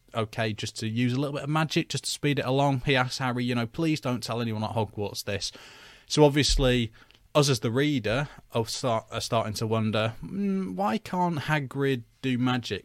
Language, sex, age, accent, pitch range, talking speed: English, male, 20-39, British, 110-130 Hz, 200 wpm